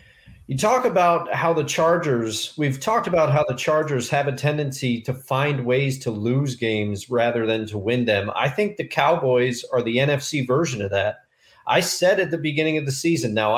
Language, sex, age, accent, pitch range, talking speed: English, male, 40-59, American, 130-195 Hz, 200 wpm